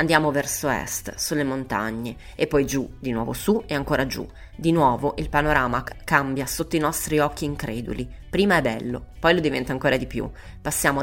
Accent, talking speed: native, 185 wpm